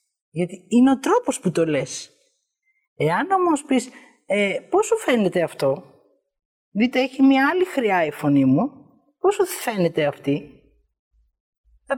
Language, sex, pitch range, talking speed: Greek, female, 175-275 Hz, 130 wpm